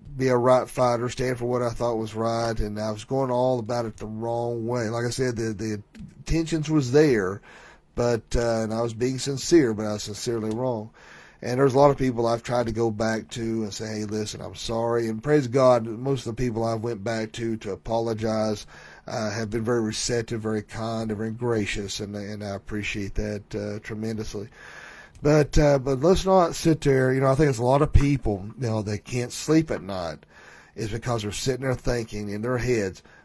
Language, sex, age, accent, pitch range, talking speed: English, male, 40-59, American, 110-135 Hz, 220 wpm